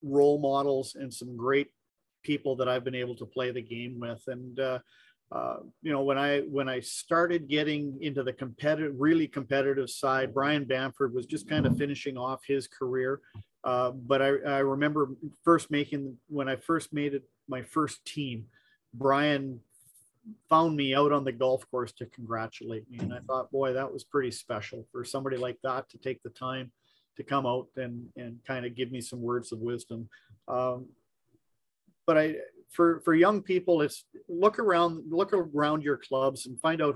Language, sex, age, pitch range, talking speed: English, male, 40-59, 125-145 Hz, 185 wpm